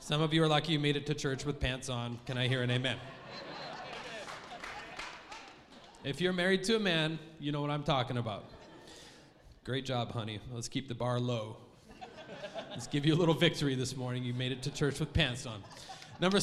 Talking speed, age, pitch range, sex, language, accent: 200 wpm, 30-49, 135-200 Hz, male, English, American